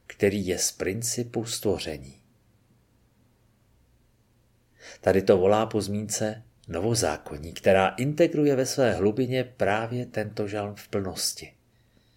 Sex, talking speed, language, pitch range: male, 105 wpm, Czech, 105-120 Hz